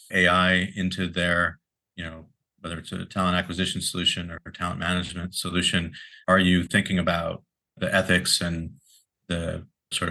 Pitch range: 85-90 Hz